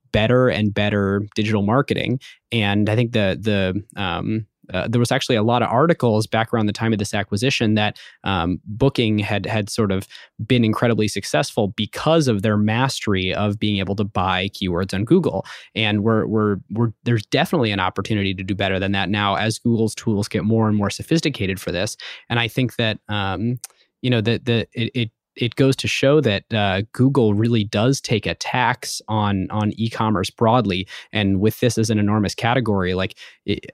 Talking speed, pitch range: 195 wpm, 100-115 Hz